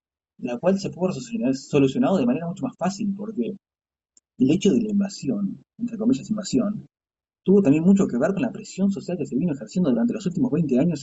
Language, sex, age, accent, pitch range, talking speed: Spanish, male, 20-39, Argentinian, 135-225 Hz, 200 wpm